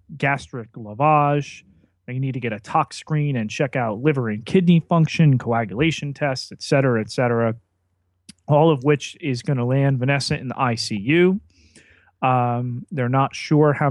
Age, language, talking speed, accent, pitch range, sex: 40-59, English, 165 wpm, American, 115-150 Hz, male